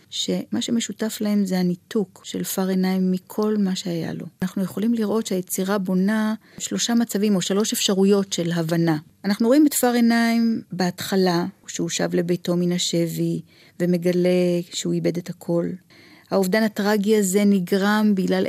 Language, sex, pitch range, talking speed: Hebrew, female, 175-215 Hz, 140 wpm